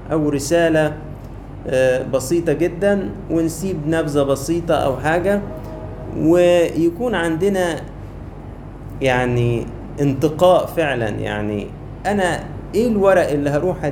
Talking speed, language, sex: 85 wpm, Arabic, male